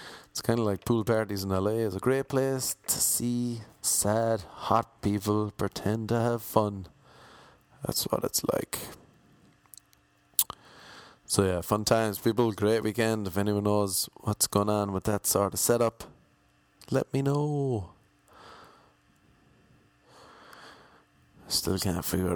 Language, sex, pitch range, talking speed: English, male, 100-130 Hz, 130 wpm